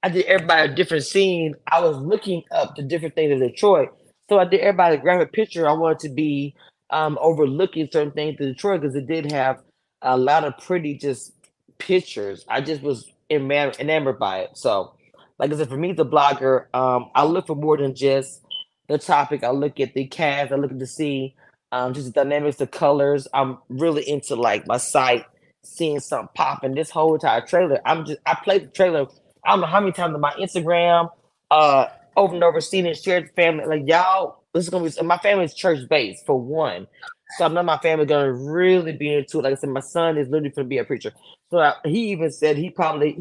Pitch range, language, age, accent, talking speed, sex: 145-180 Hz, English, 20-39, American, 225 wpm, male